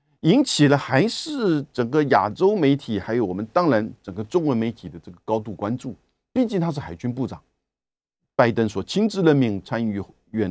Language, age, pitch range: Chinese, 50-69, 100-140 Hz